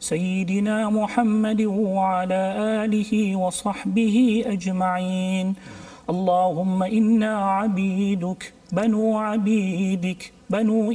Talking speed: 65 wpm